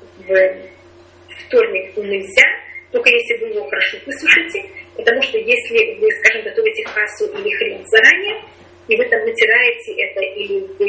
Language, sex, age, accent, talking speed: Russian, female, 30-49, native, 145 wpm